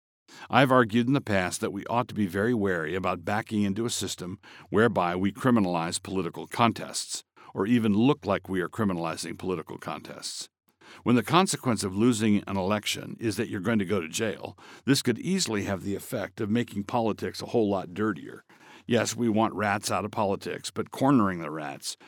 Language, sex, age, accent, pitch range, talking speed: English, male, 60-79, American, 100-120 Hz, 190 wpm